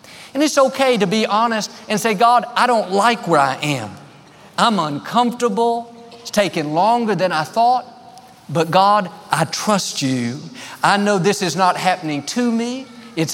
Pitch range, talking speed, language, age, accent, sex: 155-210 Hz, 165 wpm, English, 50-69, American, male